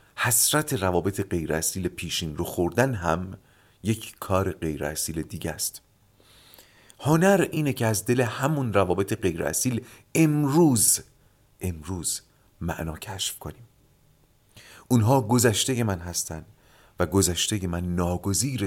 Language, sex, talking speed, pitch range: Persian, male, 115 wpm, 85-125 Hz